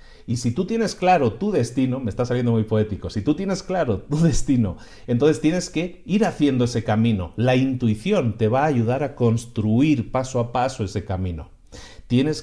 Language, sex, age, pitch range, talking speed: Spanish, male, 50-69, 110-150 Hz, 190 wpm